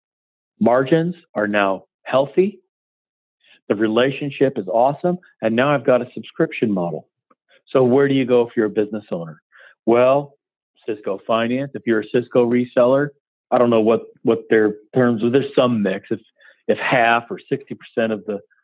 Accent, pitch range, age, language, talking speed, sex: American, 105-135 Hz, 40-59, English, 165 wpm, male